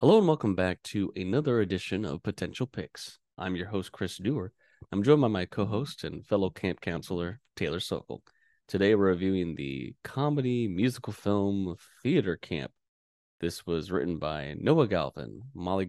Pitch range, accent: 85-110 Hz, American